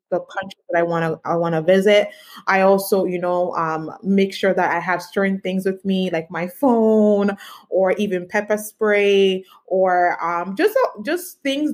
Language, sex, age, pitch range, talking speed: English, female, 20-39, 180-215 Hz, 190 wpm